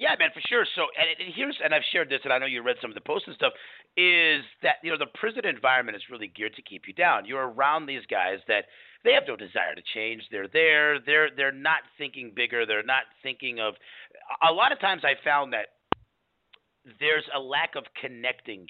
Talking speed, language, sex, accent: 230 wpm, English, male, American